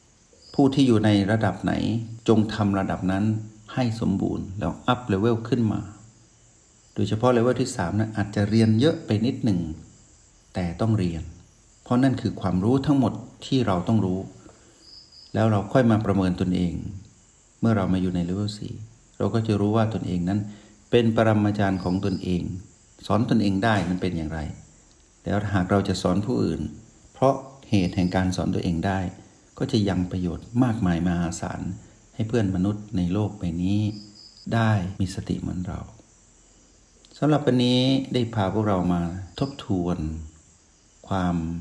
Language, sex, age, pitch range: Thai, male, 60-79, 90-110 Hz